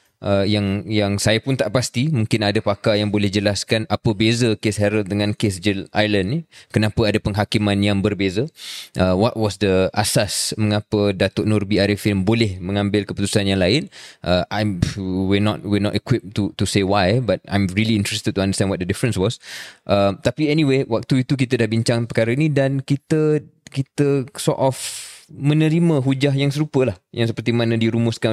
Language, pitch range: Malay, 100-130 Hz